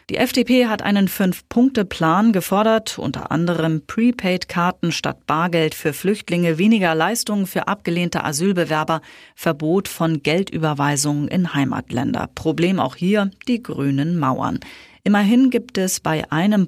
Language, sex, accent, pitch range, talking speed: German, female, German, 150-195 Hz, 120 wpm